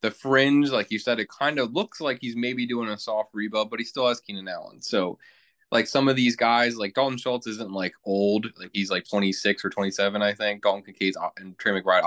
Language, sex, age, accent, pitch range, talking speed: English, male, 20-39, American, 95-115 Hz, 235 wpm